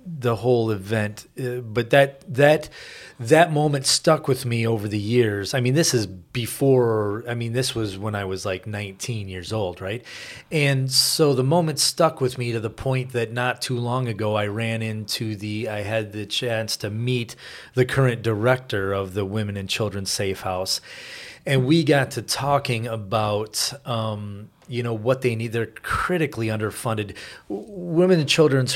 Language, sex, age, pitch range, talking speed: English, male, 30-49, 110-130 Hz, 180 wpm